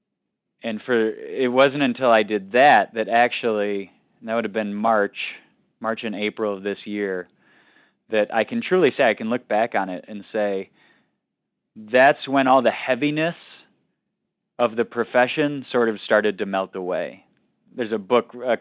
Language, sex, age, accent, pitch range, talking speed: English, male, 20-39, American, 100-115 Hz, 170 wpm